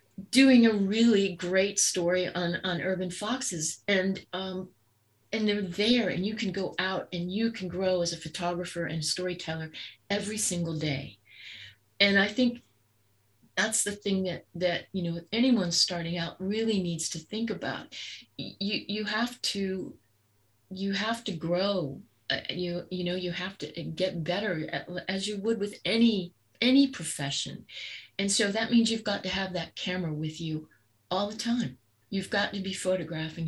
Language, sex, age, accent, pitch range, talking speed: English, female, 40-59, American, 160-200 Hz, 165 wpm